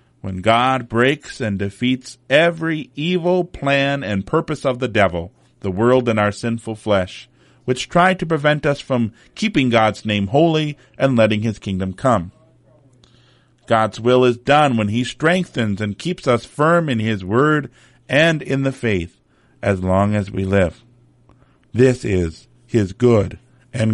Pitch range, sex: 100-130 Hz, male